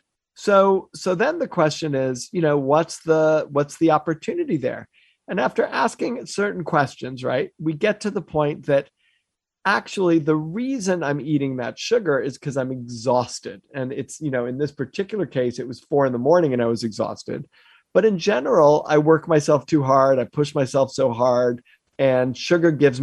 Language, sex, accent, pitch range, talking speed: English, male, American, 140-185 Hz, 185 wpm